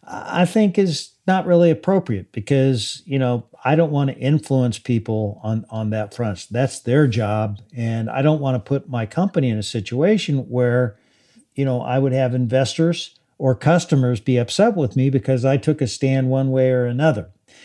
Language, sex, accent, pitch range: English, male, American, 120-145 Hz